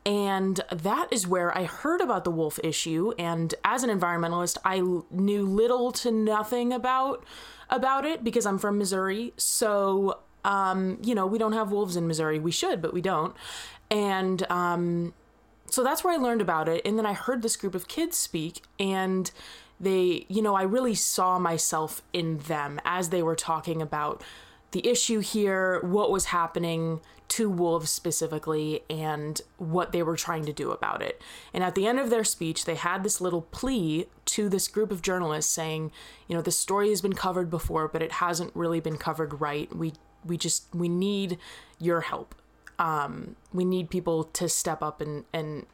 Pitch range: 160-205 Hz